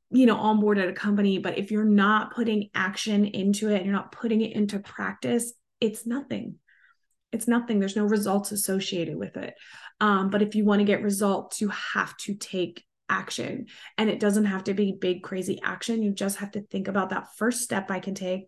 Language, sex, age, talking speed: English, female, 20-39, 215 wpm